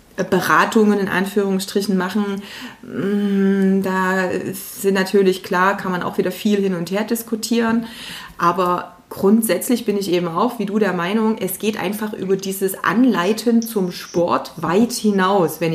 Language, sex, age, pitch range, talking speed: German, female, 30-49, 185-220 Hz, 145 wpm